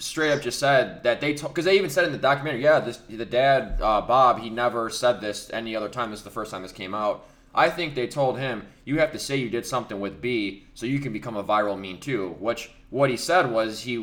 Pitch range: 115-160 Hz